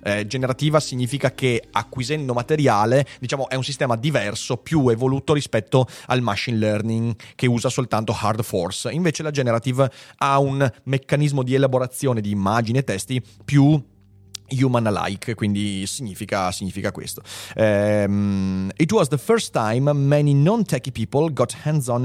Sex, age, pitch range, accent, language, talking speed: male, 30-49, 115-145 Hz, native, Italian, 145 wpm